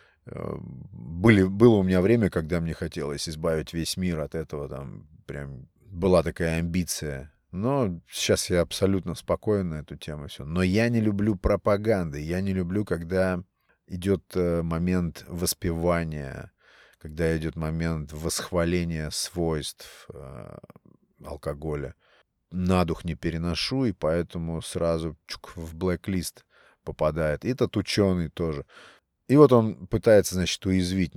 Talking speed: 125 wpm